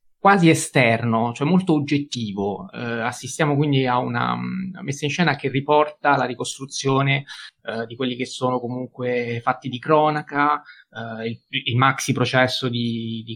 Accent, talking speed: native, 130 wpm